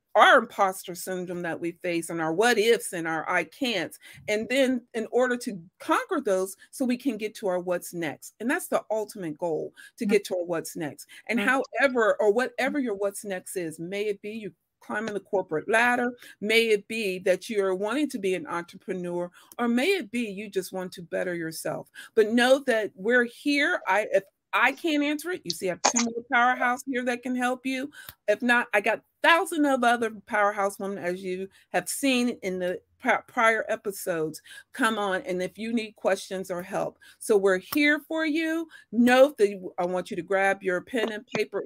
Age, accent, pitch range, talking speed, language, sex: 40-59, American, 185-250 Hz, 205 wpm, English, female